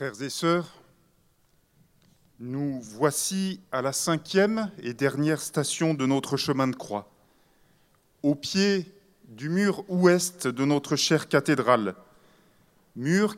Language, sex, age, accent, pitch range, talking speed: French, male, 40-59, French, 150-195 Hz, 115 wpm